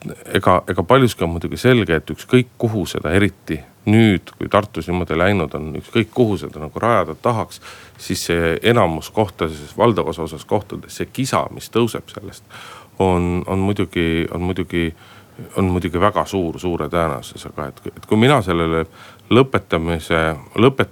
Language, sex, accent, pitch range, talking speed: Finnish, male, native, 80-115 Hz, 150 wpm